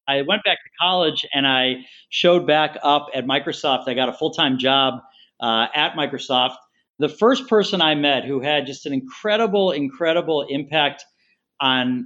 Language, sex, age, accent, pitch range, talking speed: English, male, 40-59, American, 140-185 Hz, 165 wpm